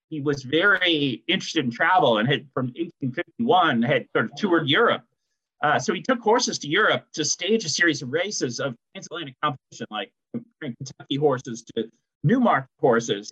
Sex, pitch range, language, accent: male, 130-180 Hz, English, American